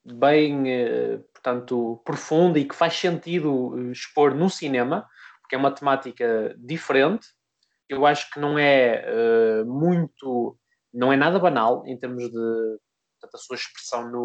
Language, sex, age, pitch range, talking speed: Portuguese, male, 20-39, 130-155 Hz, 120 wpm